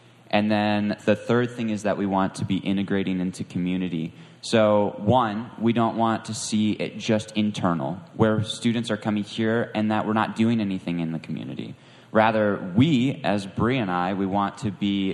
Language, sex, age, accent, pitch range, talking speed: English, male, 20-39, American, 95-115 Hz, 190 wpm